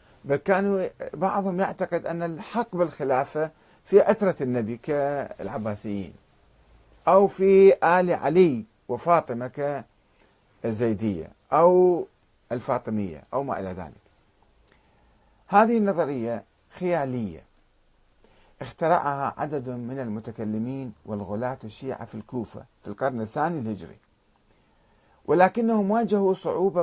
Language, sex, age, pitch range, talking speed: Arabic, male, 50-69, 110-170 Hz, 90 wpm